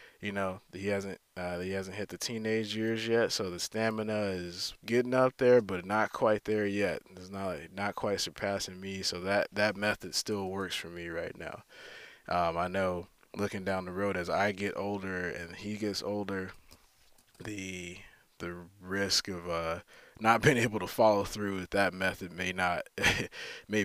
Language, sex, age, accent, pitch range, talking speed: English, male, 20-39, American, 90-105 Hz, 180 wpm